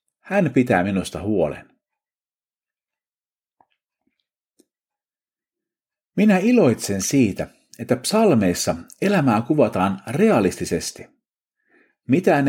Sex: male